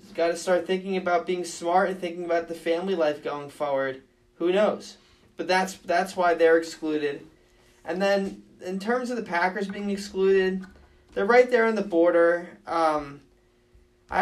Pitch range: 155-185 Hz